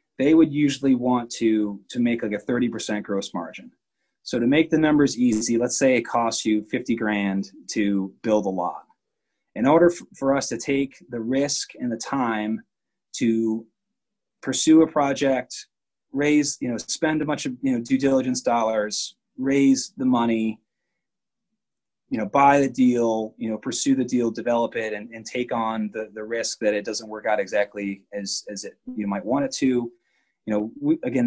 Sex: male